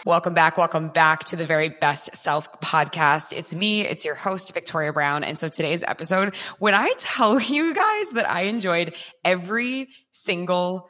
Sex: female